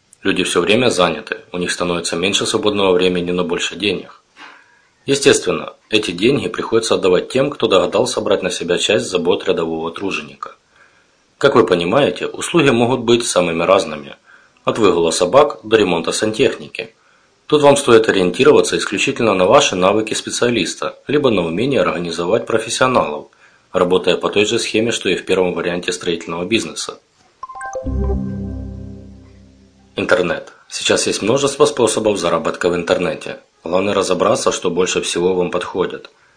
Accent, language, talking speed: native, Russian, 135 wpm